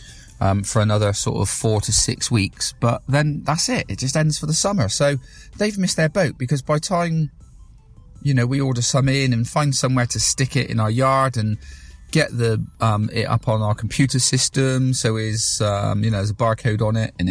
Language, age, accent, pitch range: English, 30-49, British, 110-145 Hz